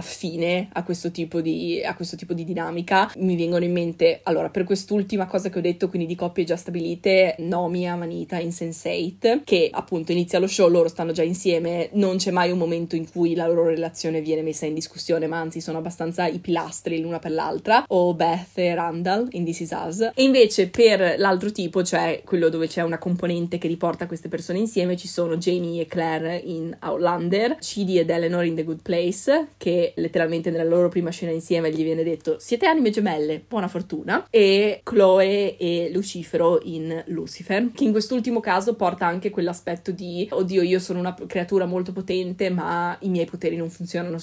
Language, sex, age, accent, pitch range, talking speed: Italian, female, 20-39, native, 165-185 Hz, 195 wpm